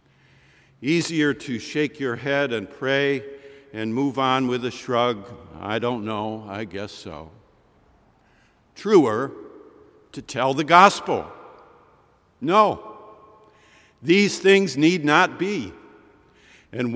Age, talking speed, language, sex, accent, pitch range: 50-69, 110 wpm, English, male, American, 120-160 Hz